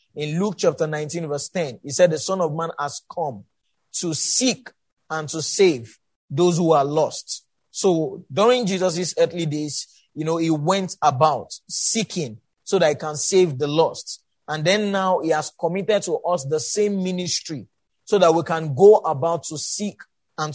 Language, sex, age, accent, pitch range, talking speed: English, male, 30-49, Nigerian, 155-185 Hz, 180 wpm